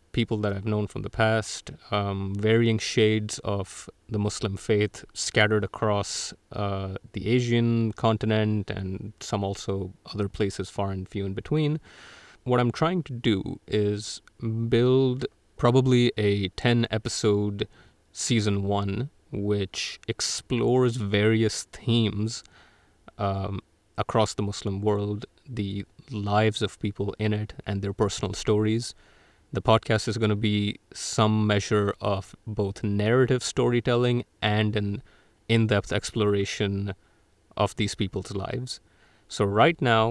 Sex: male